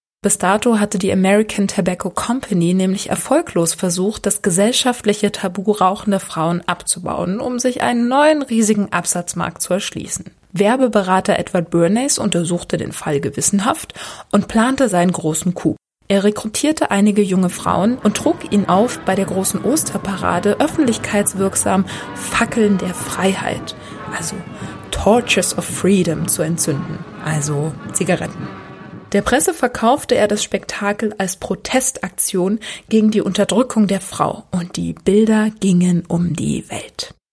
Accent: German